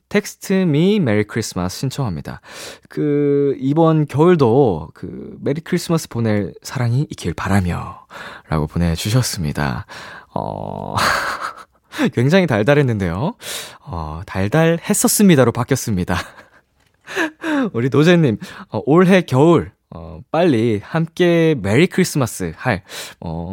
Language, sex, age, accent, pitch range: Korean, male, 20-39, native, 110-175 Hz